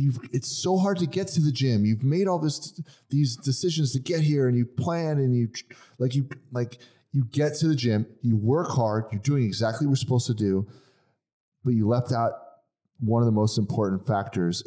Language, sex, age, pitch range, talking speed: English, male, 30-49, 110-135 Hz, 215 wpm